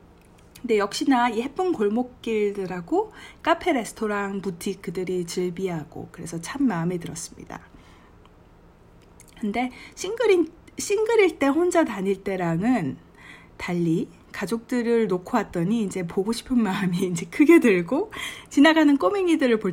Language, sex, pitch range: Korean, female, 170-240 Hz